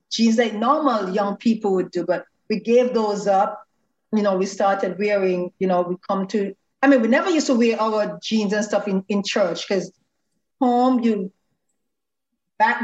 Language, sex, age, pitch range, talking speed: English, female, 40-59, 195-235 Hz, 185 wpm